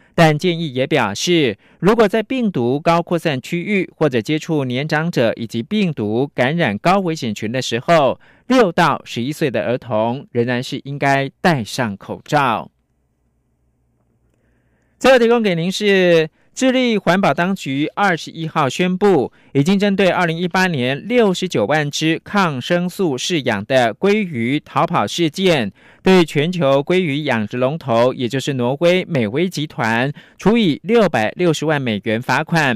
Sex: male